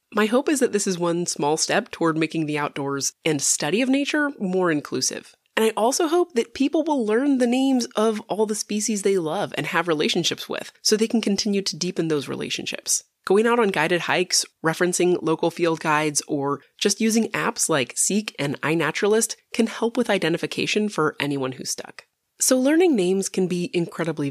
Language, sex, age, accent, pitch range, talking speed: English, female, 20-39, American, 160-230 Hz, 195 wpm